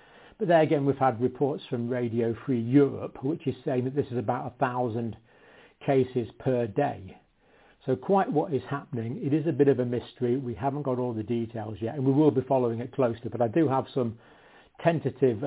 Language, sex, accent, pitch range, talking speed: English, male, British, 120-145 Hz, 210 wpm